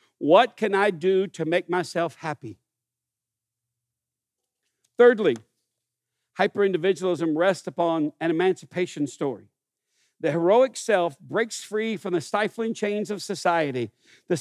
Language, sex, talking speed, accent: English, male, 110 wpm, American